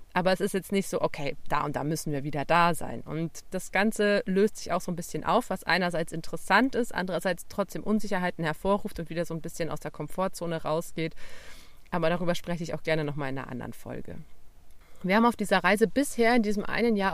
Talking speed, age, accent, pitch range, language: 220 wpm, 30-49, German, 160-200 Hz, German